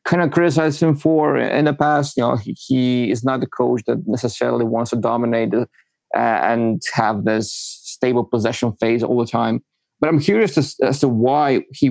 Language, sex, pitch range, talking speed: English, male, 115-130 Hz, 200 wpm